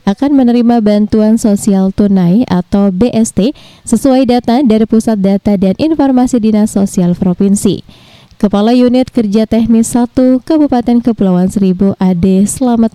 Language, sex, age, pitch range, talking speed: Indonesian, female, 20-39, 195-245 Hz, 125 wpm